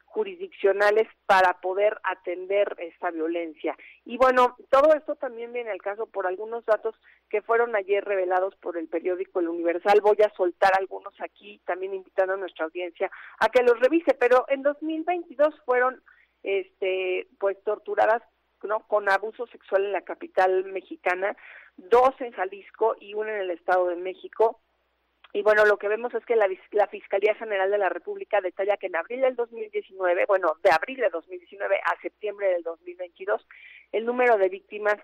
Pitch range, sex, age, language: 185-240 Hz, female, 40-59, Spanish